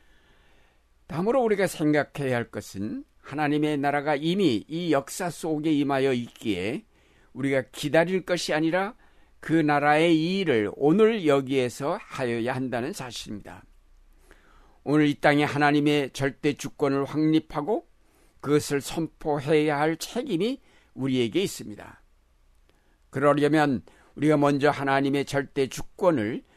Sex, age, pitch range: male, 60-79, 125-160 Hz